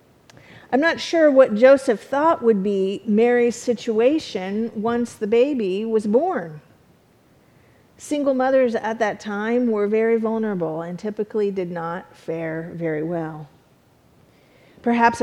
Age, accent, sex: 40-59, American, female